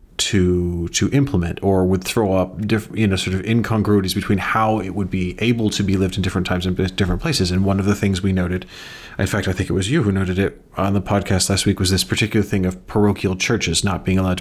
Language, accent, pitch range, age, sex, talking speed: English, American, 90-105 Hz, 30-49, male, 250 wpm